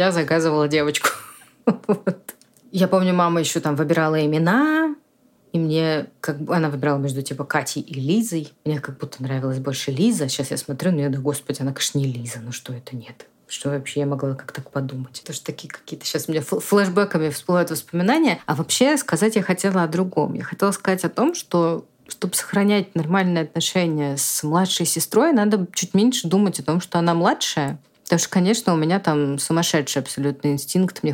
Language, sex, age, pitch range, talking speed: Russian, female, 30-49, 145-195 Hz, 190 wpm